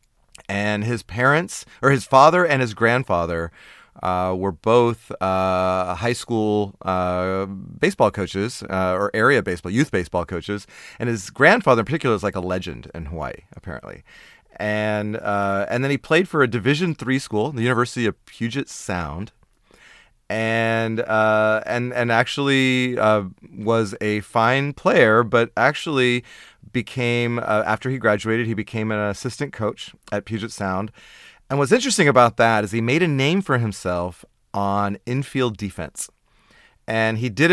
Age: 30-49